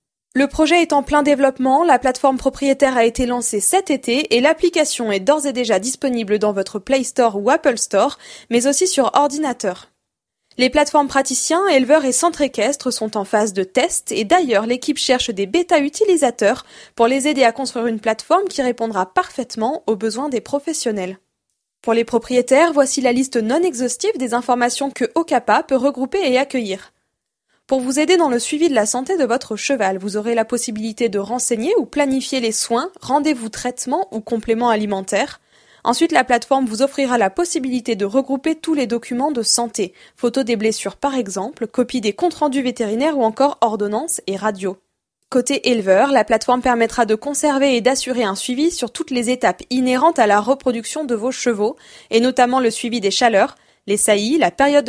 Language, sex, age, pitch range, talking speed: French, female, 20-39, 230-280 Hz, 185 wpm